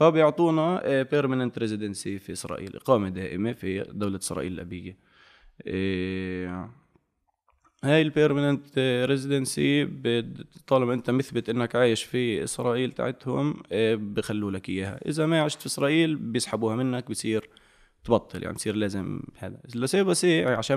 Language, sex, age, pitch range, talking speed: Arabic, male, 20-39, 95-130 Hz, 125 wpm